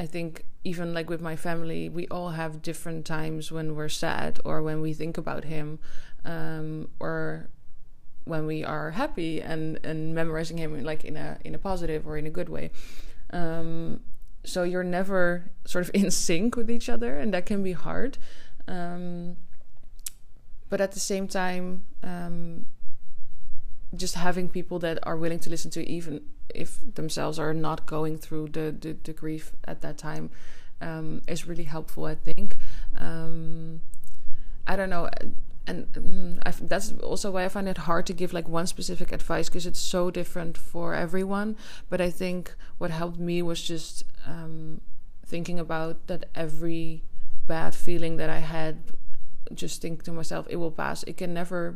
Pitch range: 155-175 Hz